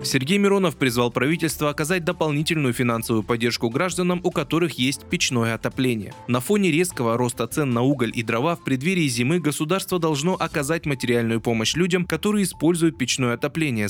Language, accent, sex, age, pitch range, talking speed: Russian, native, male, 20-39, 120-175 Hz, 155 wpm